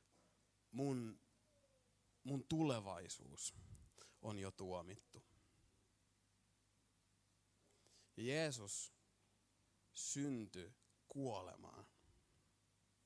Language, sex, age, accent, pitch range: Finnish, male, 30-49, native, 95-120 Hz